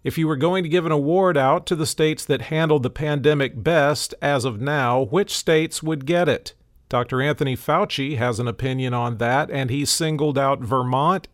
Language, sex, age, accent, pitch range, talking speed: English, male, 50-69, American, 125-155 Hz, 200 wpm